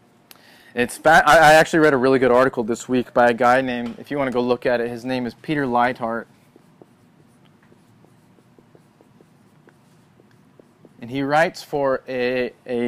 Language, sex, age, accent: English, male, 20-39, American